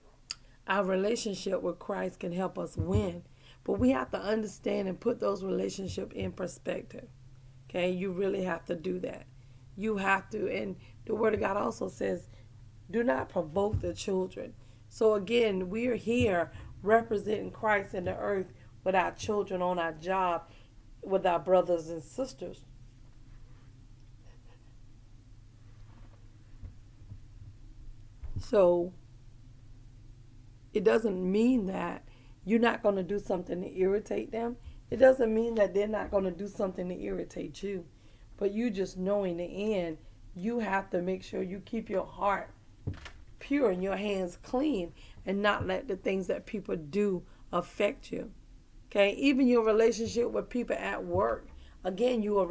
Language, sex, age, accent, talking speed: English, female, 40-59, American, 150 wpm